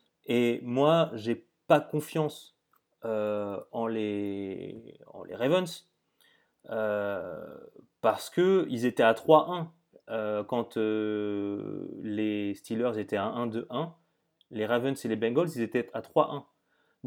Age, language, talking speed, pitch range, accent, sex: 30-49, French, 125 wpm, 110-135 Hz, French, male